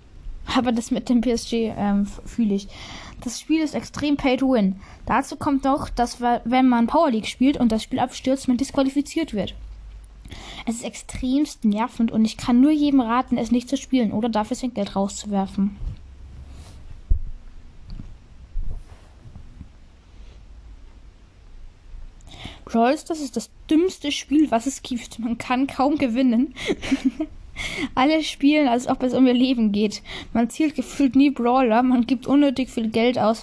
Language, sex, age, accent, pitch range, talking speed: German, female, 20-39, German, 200-260 Hz, 145 wpm